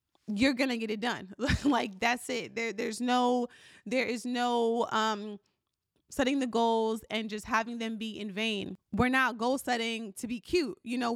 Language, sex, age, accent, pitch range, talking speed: English, female, 20-39, American, 220-265 Hz, 190 wpm